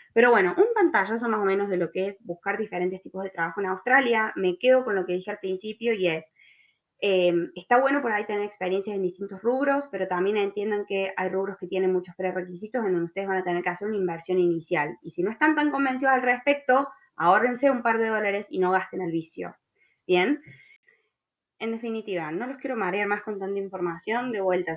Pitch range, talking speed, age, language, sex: 185-235 Hz, 220 wpm, 20-39, Spanish, female